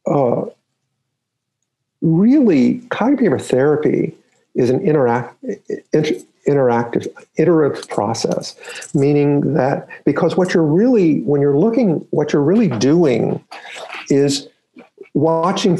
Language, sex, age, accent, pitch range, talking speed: English, male, 50-69, American, 140-190 Hz, 100 wpm